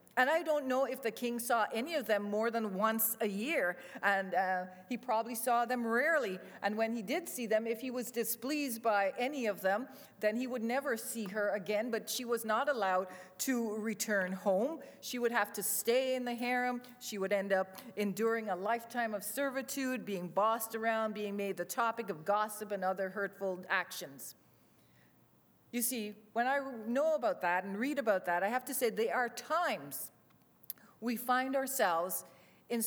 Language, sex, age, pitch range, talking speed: English, female, 40-59, 200-255 Hz, 190 wpm